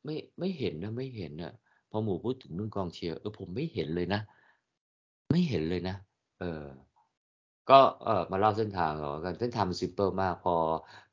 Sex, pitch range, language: male, 80-105 Hz, Thai